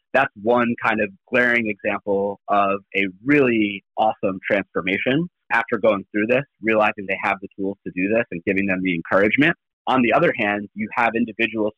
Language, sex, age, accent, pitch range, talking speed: English, male, 30-49, American, 105-135 Hz, 180 wpm